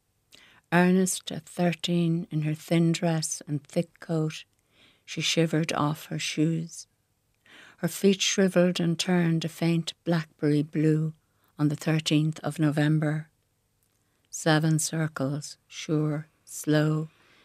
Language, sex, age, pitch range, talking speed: English, female, 60-79, 145-170 Hz, 115 wpm